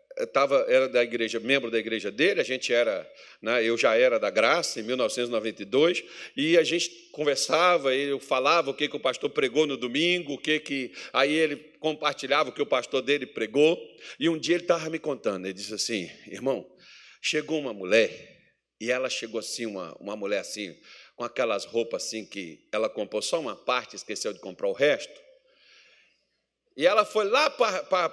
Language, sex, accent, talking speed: Portuguese, male, Brazilian, 190 wpm